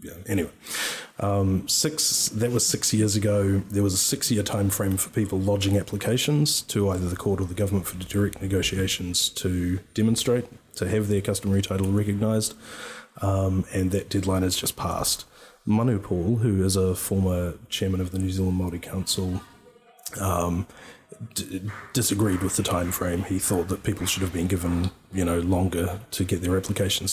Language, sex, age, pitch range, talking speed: English, male, 30-49, 90-100 Hz, 175 wpm